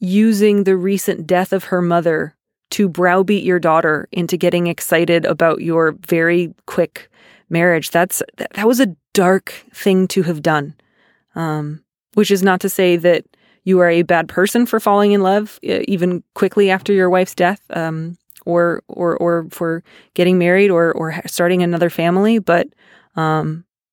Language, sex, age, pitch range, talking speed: English, female, 20-39, 170-200 Hz, 160 wpm